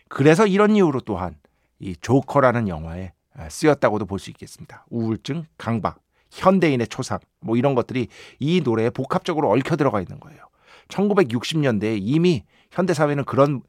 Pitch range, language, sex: 115-175 Hz, Korean, male